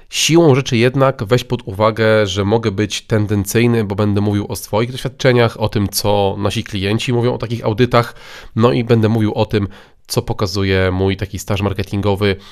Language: Polish